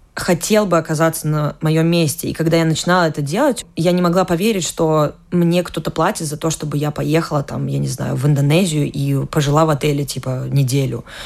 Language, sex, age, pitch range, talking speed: Russian, female, 20-39, 150-180 Hz, 195 wpm